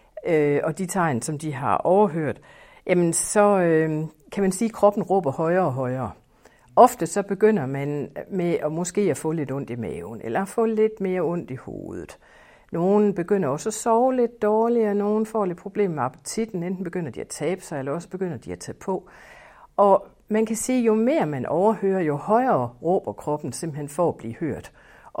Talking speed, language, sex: 195 wpm, Danish, female